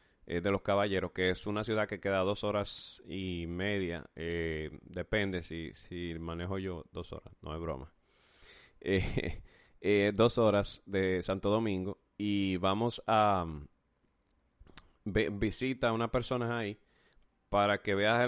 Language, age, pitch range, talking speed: Spanish, 30-49, 95-115 Hz, 140 wpm